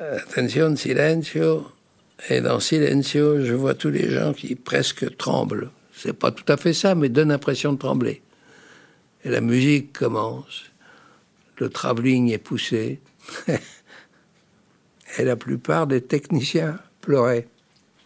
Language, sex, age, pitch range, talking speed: French, male, 60-79, 120-160 Hz, 125 wpm